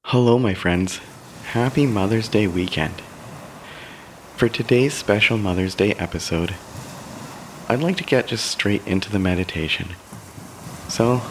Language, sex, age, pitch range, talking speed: English, male, 30-49, 95-115 Hz, 120 wpm